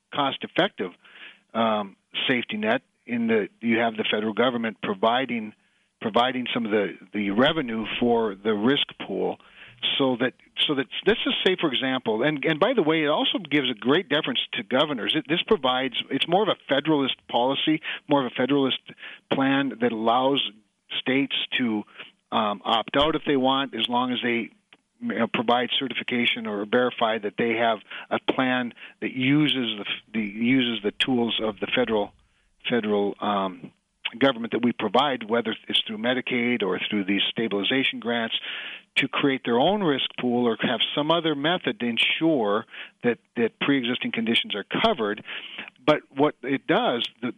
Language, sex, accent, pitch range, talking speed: English, male, American, 115-150 Hz, 165 wpm